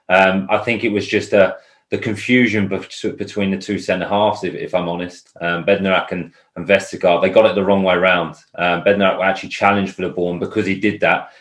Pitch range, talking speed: 90-105 Hz, 210 wpm